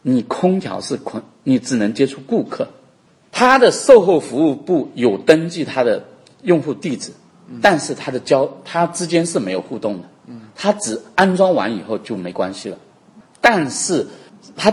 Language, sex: Chinese, male